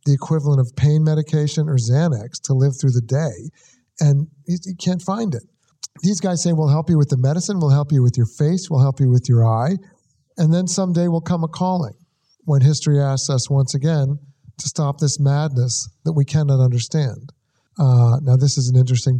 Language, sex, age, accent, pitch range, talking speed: English, male, 50-69, American, 130-155 Hz, 205 wpm